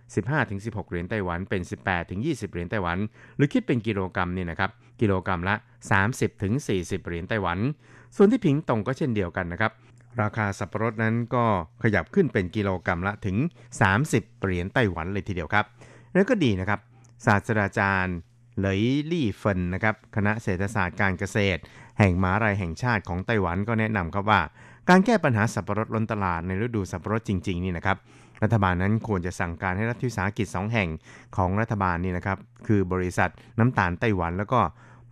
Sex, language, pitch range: male, Thai, 95-120 Hz